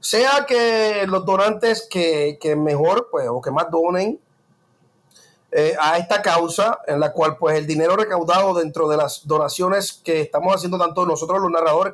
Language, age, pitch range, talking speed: English, 30-49, 165-230 Hz, 160 wpm